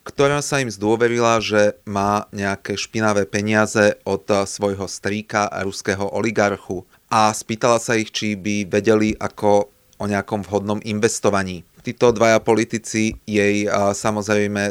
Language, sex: Slovak, male